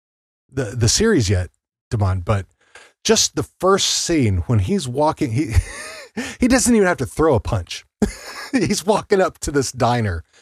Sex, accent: male, American